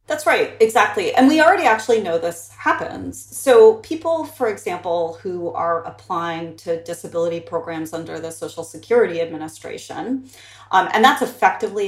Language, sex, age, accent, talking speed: English, female, 30-49, American, 145 wpm